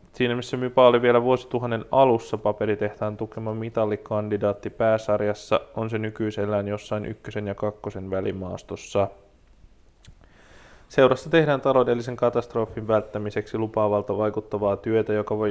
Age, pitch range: 20-39, 100-115 Hz